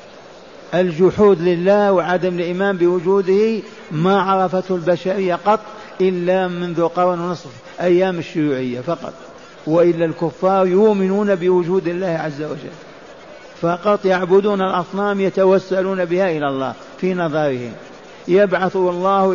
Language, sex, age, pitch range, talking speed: Arabic, male, 50-69, 160-190 Hz, 105 wpm